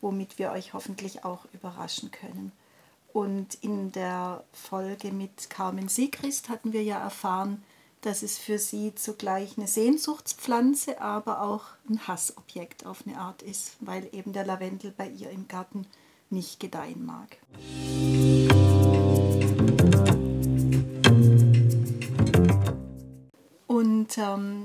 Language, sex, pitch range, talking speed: German, female, 195-235 Hz, 110 wpm